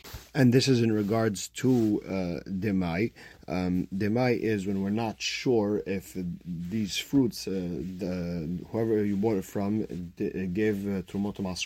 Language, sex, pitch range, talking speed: English, male, 95-120 Hz, 140 wpm